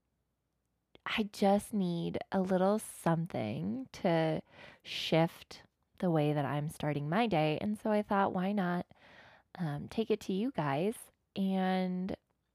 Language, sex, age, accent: English, female, 20-39, American